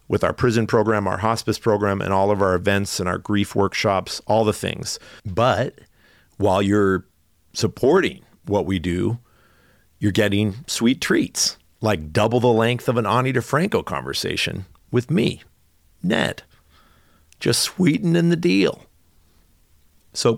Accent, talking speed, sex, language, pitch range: American, 140 wpm, male, English, 85-115 Hz